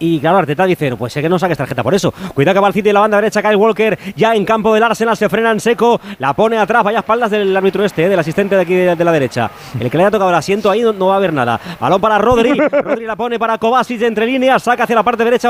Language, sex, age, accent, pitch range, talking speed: Spanish, male, 30-49, Spanish, 200-245 Hz, 310 wpm